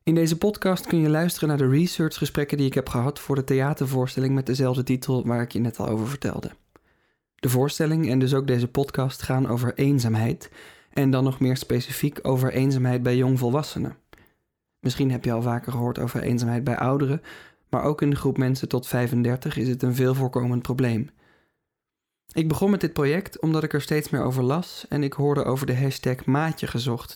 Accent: Dutch